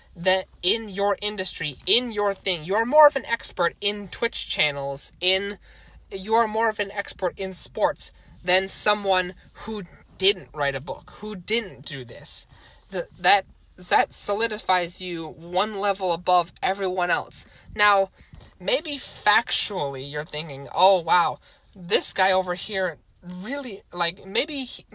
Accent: American